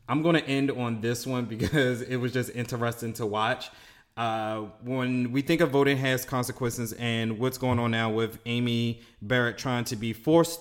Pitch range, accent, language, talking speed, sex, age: 105-125 Hz, American, English, 190 wpm, male, 30-49